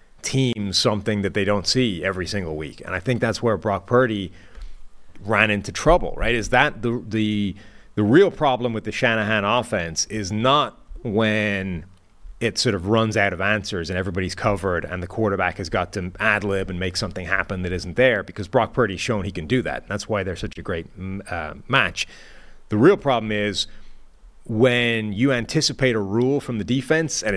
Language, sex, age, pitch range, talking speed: English, male, 30-49, 100-130 Hz, 195 wpm